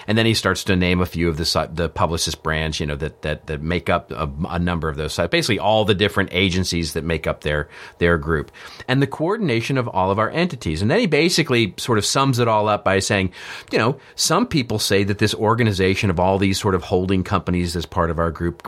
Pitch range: 90-125 Hz